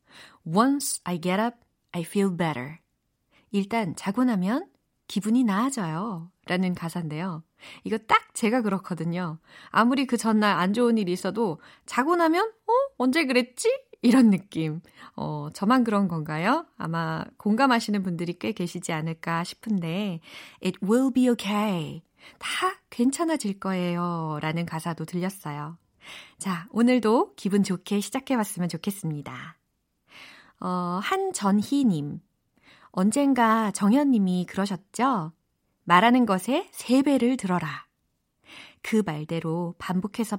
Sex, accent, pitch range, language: female, native, 175-245 Hz, Korean